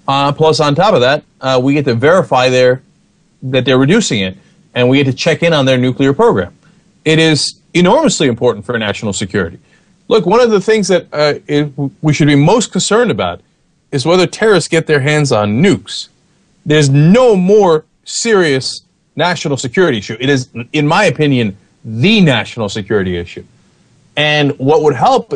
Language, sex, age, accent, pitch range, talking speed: English, male, 30-49, American, 135-180 Hz, 175 wpm